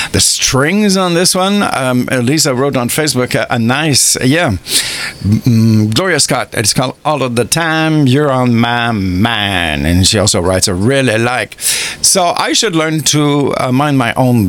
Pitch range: 115-145 Hz